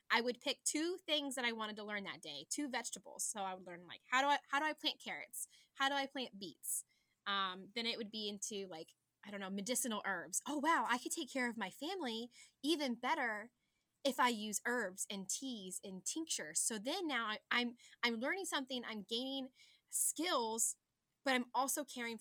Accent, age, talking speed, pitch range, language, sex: American, 10-29, 210 wpm, 200-270 Hz, English, female